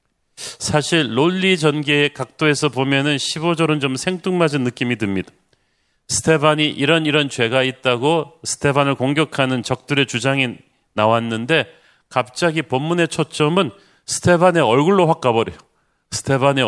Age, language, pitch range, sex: 40-59, Korean, 120-155 Hz, male